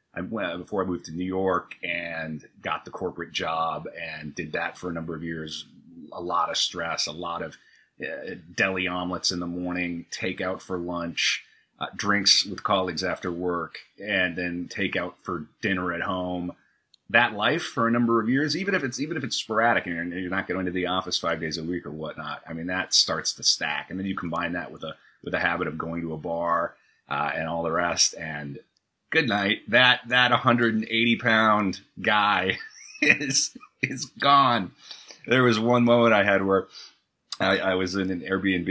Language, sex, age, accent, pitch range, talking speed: English, male, 30-49, American, 85-95 Hz, 190 wpm